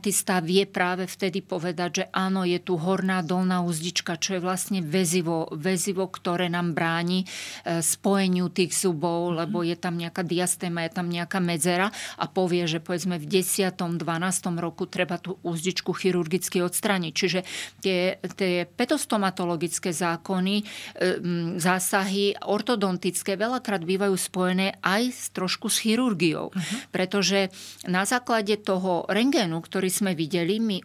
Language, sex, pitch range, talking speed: Slovak, female, 180-205 Hz, 130 wpm